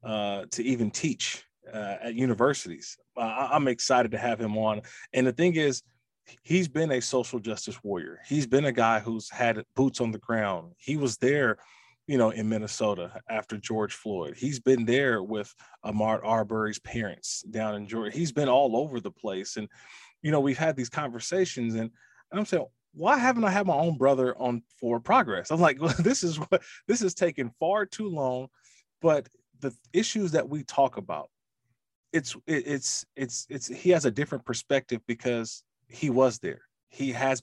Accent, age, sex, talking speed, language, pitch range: American, 20-39, male, 185 wpm, English, 115-145 Hz